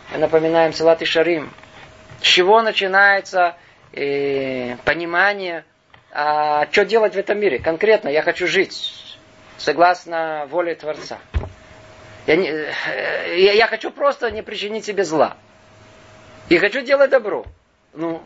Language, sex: Russian, male